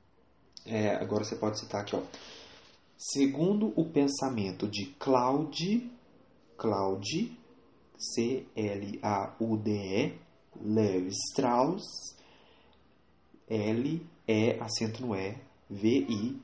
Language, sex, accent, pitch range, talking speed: English, male, Brazilian, 105-135 Hz, 80 wpm